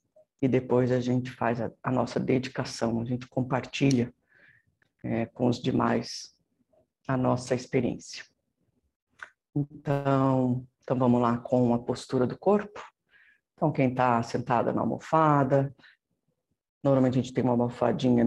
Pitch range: 120-140 Hz